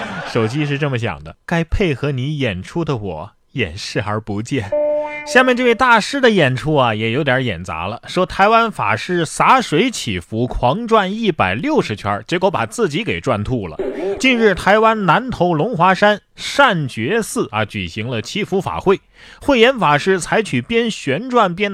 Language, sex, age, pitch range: Chinese, male, 30-49, 120-190 Hz